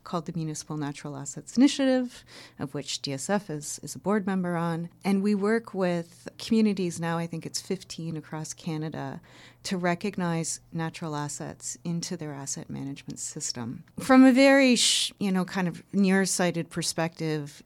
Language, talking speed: English, 155 wpm